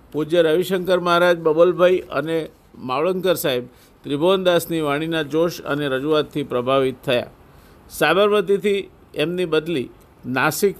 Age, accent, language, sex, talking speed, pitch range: 50-69, native, Gujarati, male, 100 wpm, 145-180 Hz